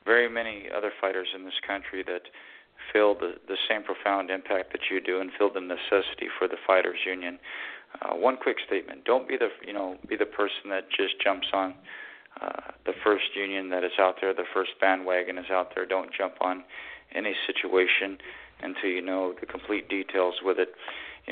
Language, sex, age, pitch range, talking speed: English, male, 40-59, 95-100 Hz, 195 wpm